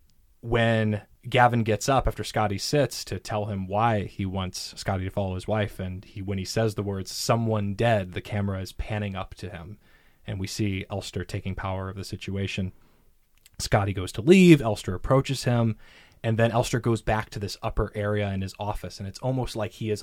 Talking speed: 205 wpm